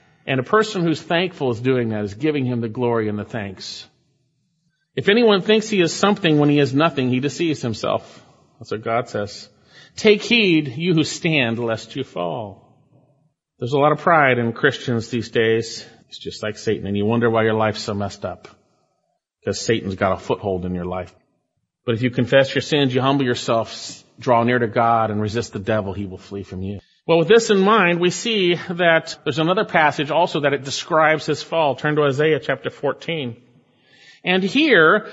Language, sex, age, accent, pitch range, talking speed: English, male, 40-59, American, 120-185 Hz, 200 wpm